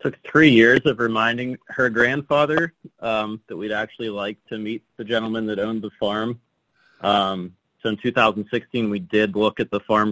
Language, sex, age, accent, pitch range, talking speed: English, male, 30-49, American, 100-115 Hz, 180 wpm